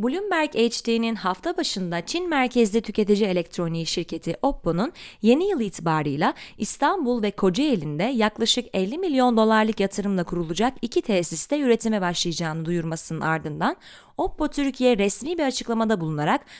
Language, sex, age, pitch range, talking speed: Turkish, female, 30-49, 180-275 Hz, 125 wpm